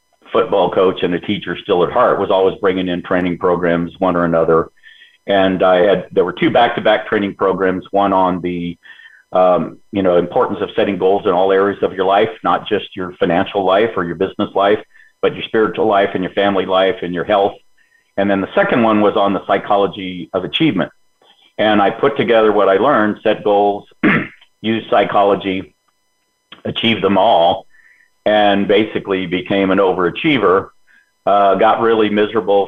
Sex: male